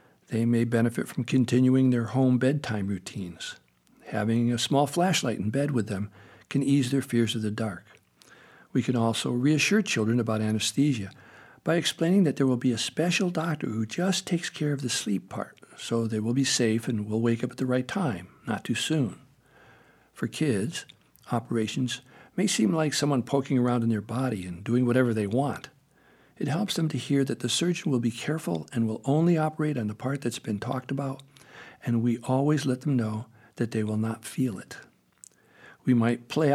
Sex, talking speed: male, 195 wpm